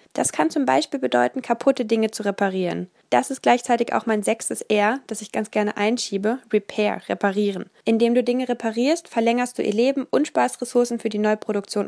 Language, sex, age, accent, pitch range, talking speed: German, female, 10-29, German, 205-245 Hz, 185 wpm